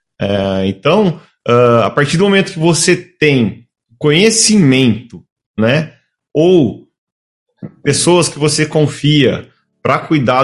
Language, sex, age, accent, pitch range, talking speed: Portuguese, male, 30-49, Brazilian, 115-160 Hz, 100 wpm